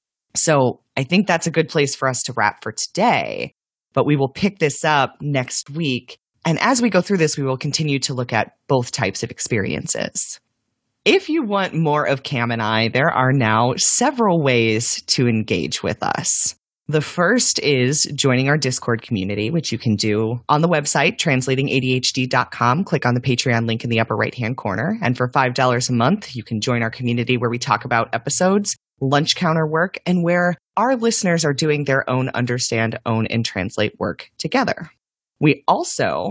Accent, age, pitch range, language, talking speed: American, 30-49, 125-170 Hz, English, 185 wpm